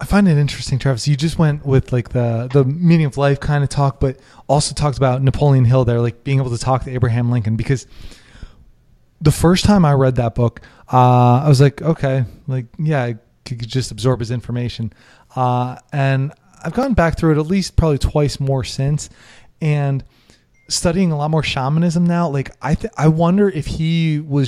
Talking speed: 200 wpm